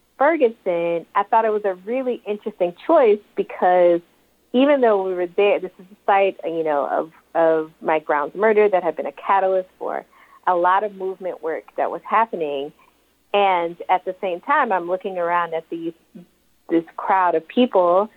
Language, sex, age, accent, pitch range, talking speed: English, female, 40-59, American, 165-210 Hz, 180 wpm